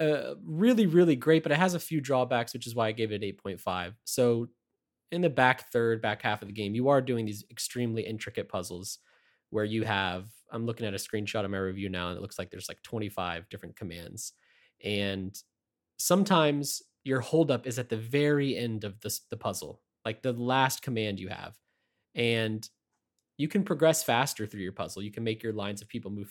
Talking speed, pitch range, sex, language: 205 wpm, 100-130 Hz, male, English